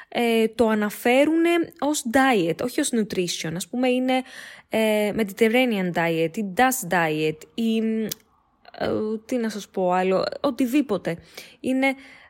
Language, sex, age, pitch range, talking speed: Greek, female, 20-39, 210-275 Hz, 110 wpm